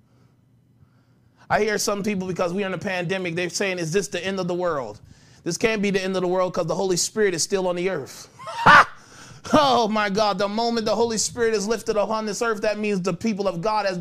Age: 30-49